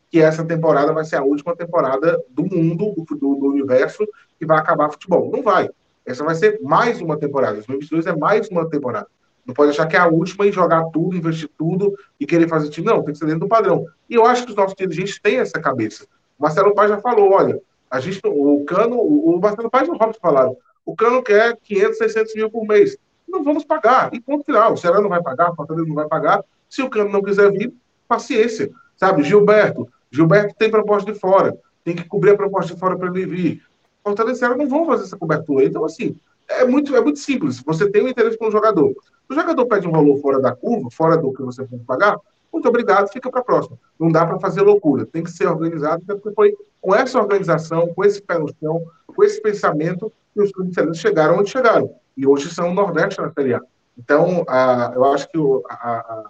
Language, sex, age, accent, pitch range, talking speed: Portuguese, male, 20-39, Brazilian, 160-220 Hz, 230 wpm